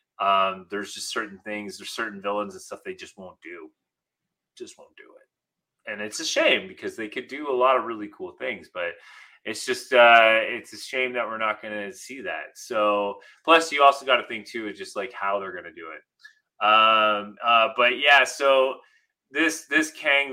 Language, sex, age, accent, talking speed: English, male, 30-49, American, 210 wpm